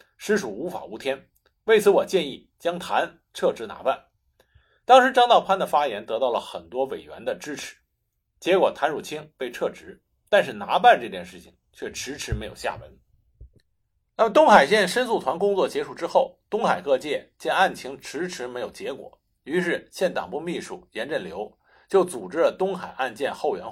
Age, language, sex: 50-69, Chinese, male